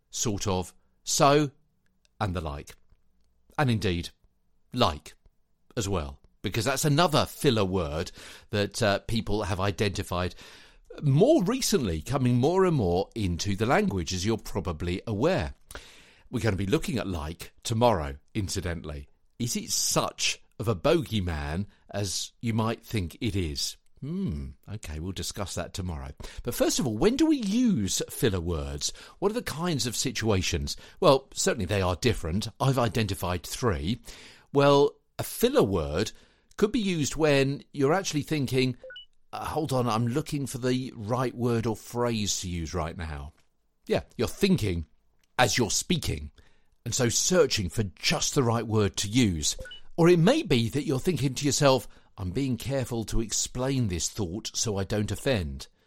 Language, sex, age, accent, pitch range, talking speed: English, male, 50-69, British, 90-135 Hz, 155 wpm